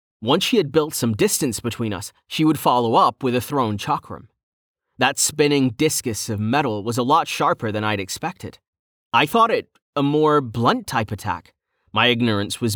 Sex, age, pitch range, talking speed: male, 30-49, 110-150 Hz, 185 wpm